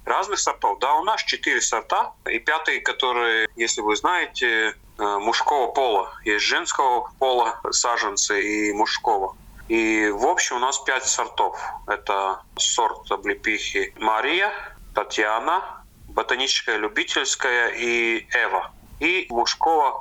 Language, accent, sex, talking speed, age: Russian, native, male, 115 wpm, 30-49